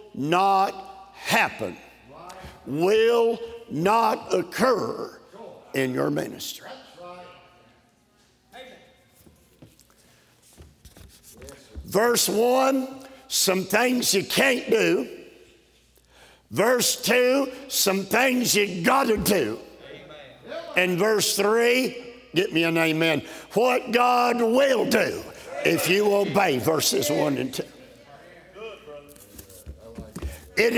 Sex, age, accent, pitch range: male, 50-69, American, 170-250 Hz